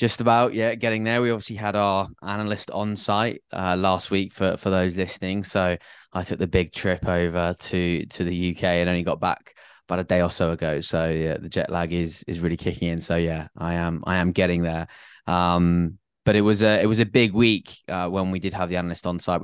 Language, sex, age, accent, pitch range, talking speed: English, male, 20-39, British, 85-100 Hz, 240 wpm